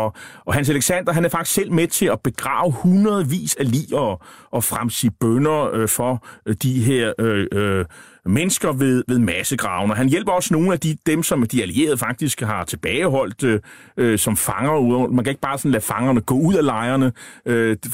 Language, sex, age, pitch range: Danish, male, 30-49, 120-160 Hz